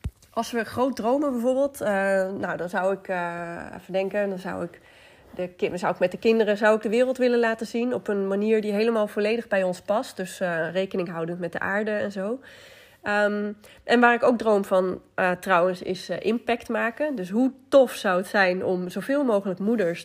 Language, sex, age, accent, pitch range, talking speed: Dutch, female, 20-39, Dutch, 185-245 Hz, 190 wpm